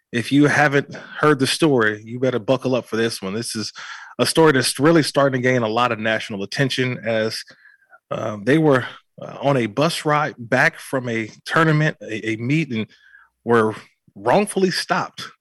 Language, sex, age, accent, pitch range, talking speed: English, male, 30-49, American, 110-140 Hz, 170 wpm